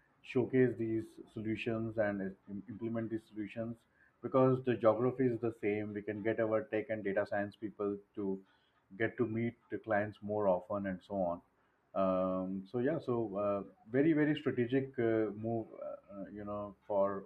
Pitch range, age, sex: 100-115 Hz, 30-49, male